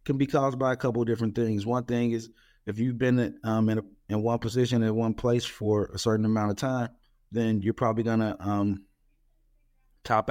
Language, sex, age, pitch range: English, male, 30-49, 100-115 Hz